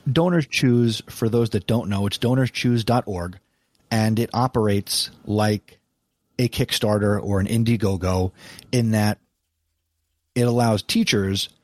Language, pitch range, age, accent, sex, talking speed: English, 100-120 Hz, 30-49, American, male, 115 wpm